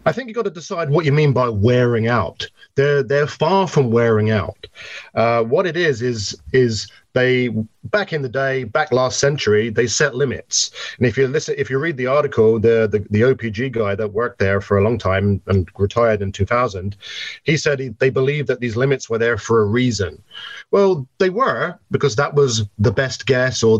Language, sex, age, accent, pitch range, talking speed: English, male, 30-49, British, 110-135 Hz, 210 wpm